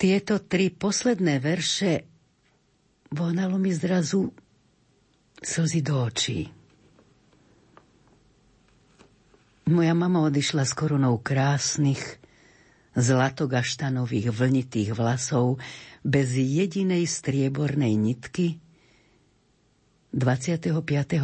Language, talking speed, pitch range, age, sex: Slovak, 70 wpm, 125-160 Hz, 50-69, female